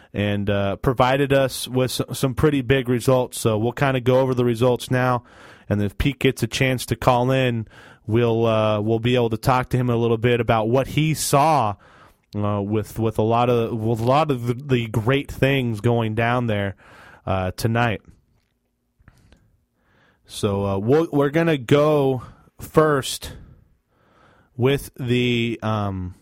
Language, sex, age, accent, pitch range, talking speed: English, male, 20-39, American, 110-135 Hz, 160 wpm